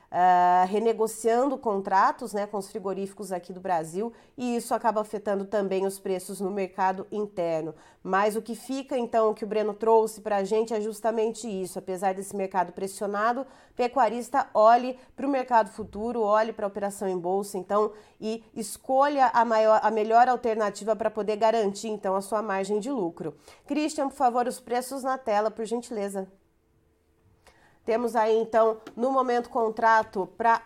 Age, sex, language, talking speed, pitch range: 30-49, female, Portuguese, 160 wpm, 195-230 Hz